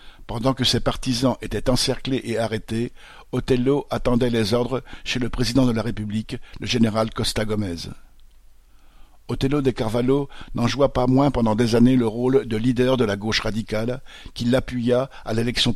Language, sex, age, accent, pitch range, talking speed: French, male, 50-69, French, 110-130 Hz, 170 wpm